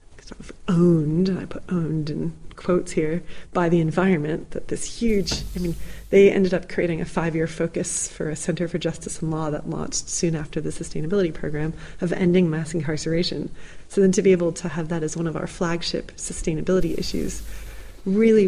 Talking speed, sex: 190 wpm, female